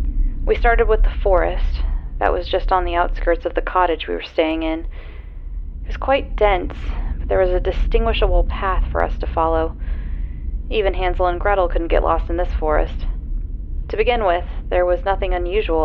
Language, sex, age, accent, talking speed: English, female, 30-49, American, 185 wpm